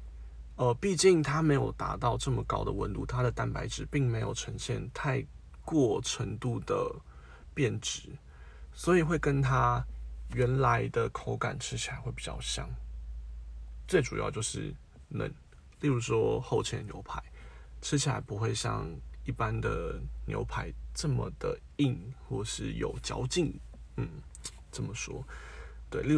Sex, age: male, 20-39